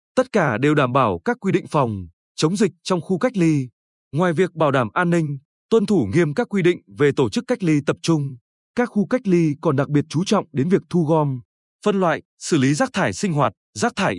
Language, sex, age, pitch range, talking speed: Vietnamese, male, 20-39, 145-200 Hz, 240 wpm